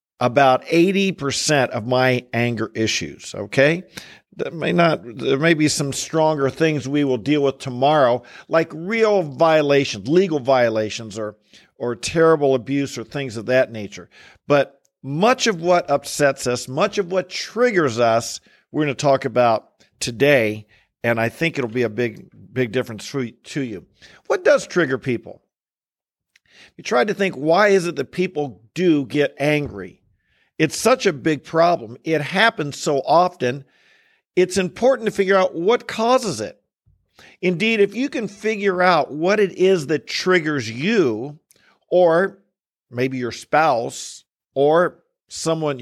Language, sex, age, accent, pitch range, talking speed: English, male, 50-69, American, 130-180 Hz, 150 wpm